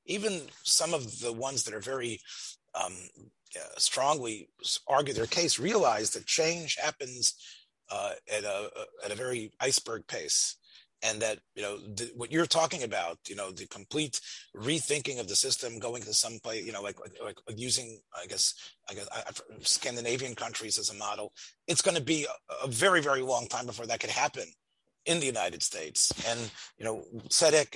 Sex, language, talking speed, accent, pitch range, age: male, English, 185 wpm, American, 120-165 Hz, 30-49